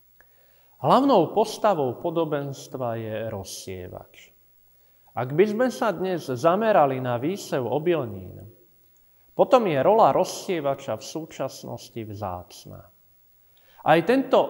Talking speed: 95 wpm